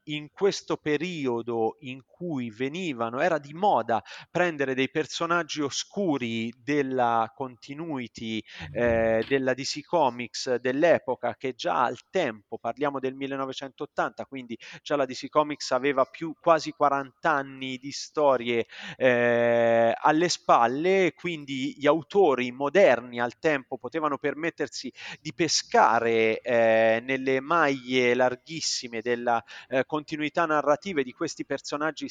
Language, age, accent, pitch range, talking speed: Italian, 30-49, native, 120-155 Hz, 120 wpm